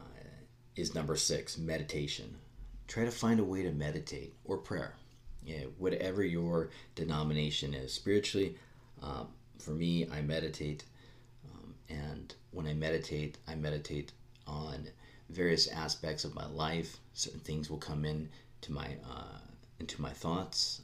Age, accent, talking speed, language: 40-59, American, 140 wpm, English